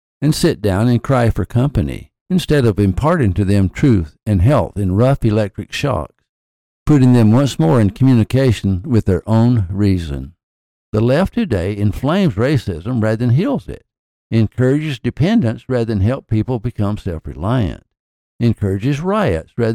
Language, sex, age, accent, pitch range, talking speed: English, male, 60-79, American, 95-130 Hz, 150 wpm